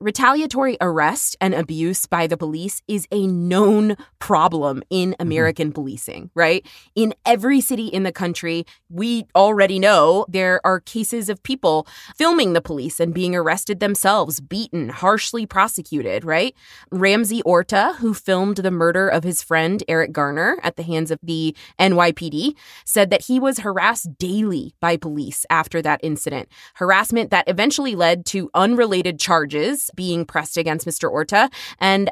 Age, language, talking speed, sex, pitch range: 20-39, English, 150 wpm, female, 170-215 Hz